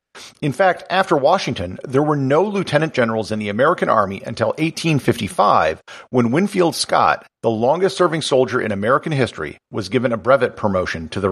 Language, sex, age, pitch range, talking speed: English, male, 50-69, 110-150 Hz, 165 wpm